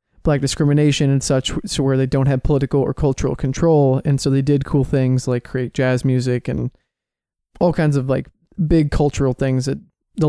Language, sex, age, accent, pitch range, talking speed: English, male, 20-39, American, 135-150 Hz, 190 wpm